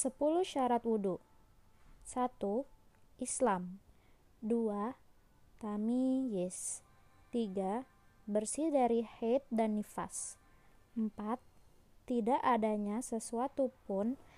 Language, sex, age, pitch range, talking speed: Malay, female, 20-39, 210-255 Hz, 80 wpm